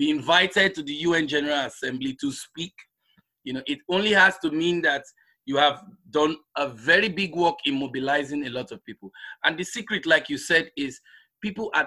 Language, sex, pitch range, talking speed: English, male, 140-190 Hz, 195 wpm